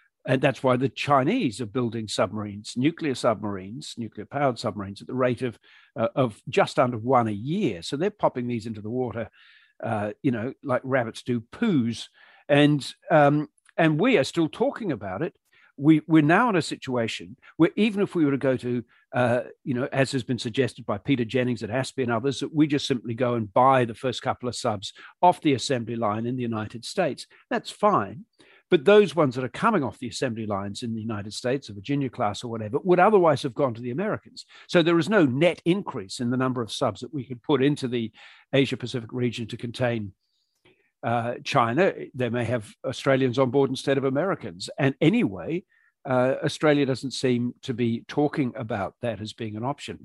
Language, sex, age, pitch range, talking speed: English, male, 50-69, 120-145 Hz, 205 wpm